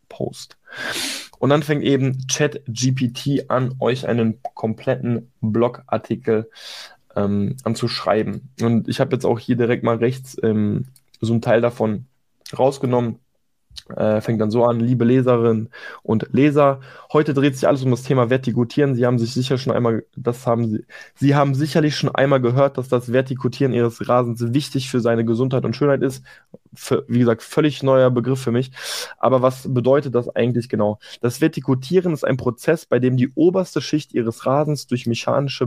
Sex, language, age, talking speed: male, German, 10-29, 165 wpm